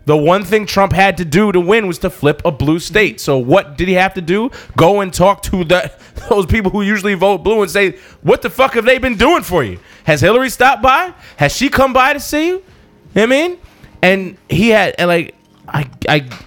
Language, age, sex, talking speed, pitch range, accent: English, 20-39, male, 240 wpm, 145-200 Hz, American